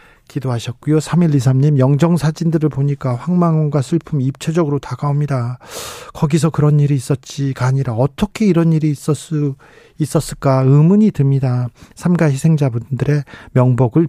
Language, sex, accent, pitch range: Korean, male, native, 130-155 Hz